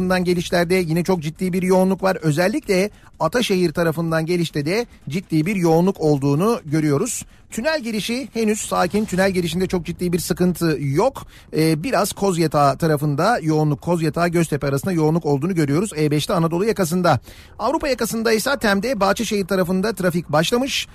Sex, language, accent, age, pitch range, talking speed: male, Turkish, native, 40-59, 155-195 Hz, 145 wpm